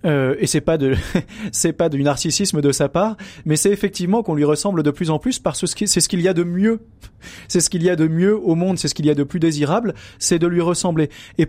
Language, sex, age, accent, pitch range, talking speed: French, male, 30-49, French, 145-195 Hz, 275 wpm